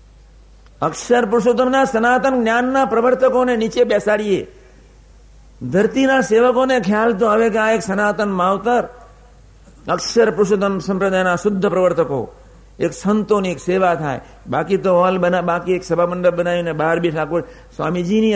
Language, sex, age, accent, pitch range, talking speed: Gujarati, male, 60-79, native, 155-215 Hz, 130 wpm